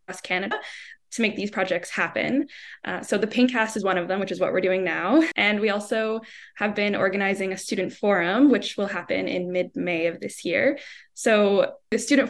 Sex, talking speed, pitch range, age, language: female, 195 wpm, 190-245 Hz, 10-29, English